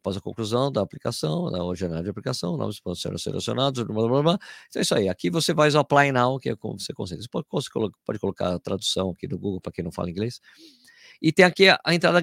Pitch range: 105-160 Hz